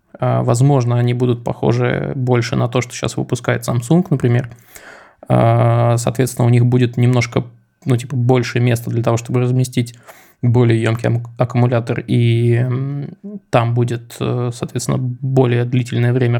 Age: 20-39